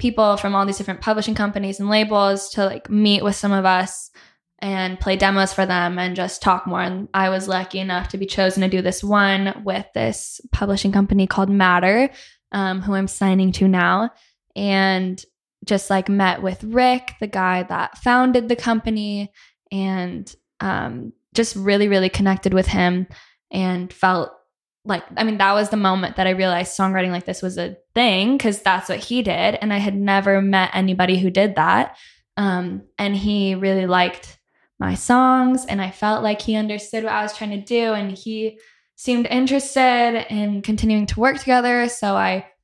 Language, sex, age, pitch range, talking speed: English, female, 10-29, 185-215 Hz, 185 wpm